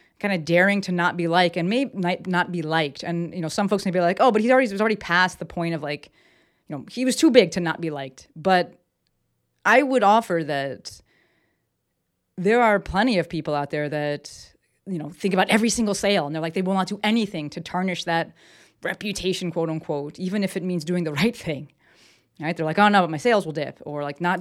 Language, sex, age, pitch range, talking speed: English, female, 30-49, 155-195 Hz, 235 wpm